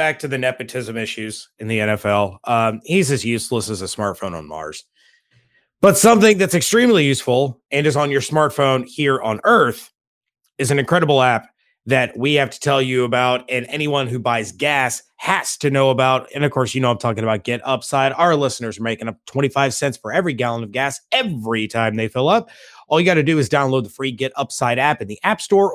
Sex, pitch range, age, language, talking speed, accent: male, 125-170 Hz, 30-49, English, 215 wpm, American